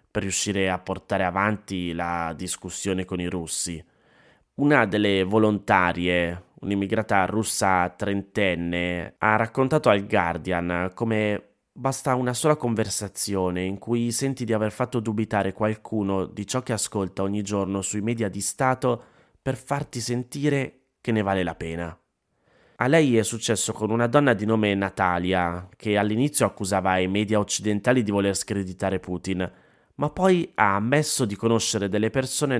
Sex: male